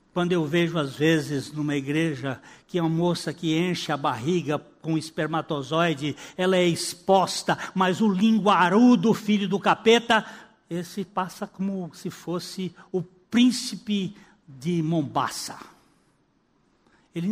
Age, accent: 60-79, Brazilian